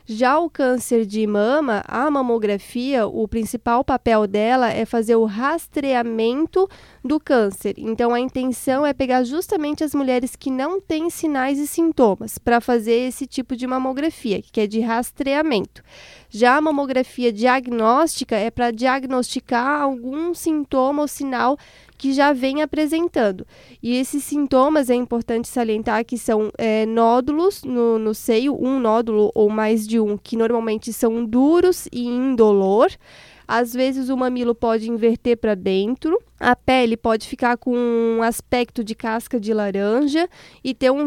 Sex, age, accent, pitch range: female, 10-29, Brazilian, 230-270 Hz